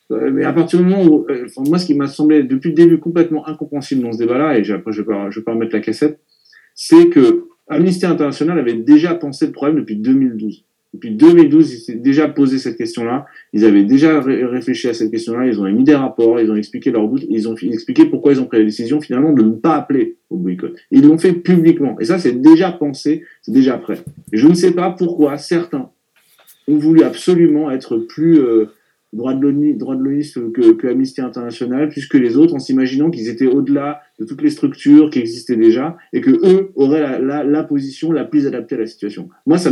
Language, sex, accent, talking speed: French, male, French, 225 wpm